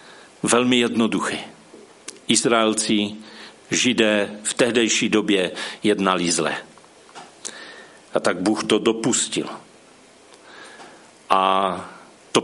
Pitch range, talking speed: 100-115 Hz, 75 wpm